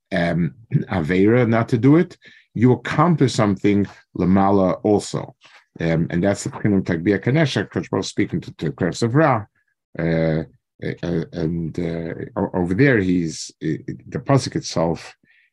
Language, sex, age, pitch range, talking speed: English, male, 50-69, 90-125 Hz, 130 wpm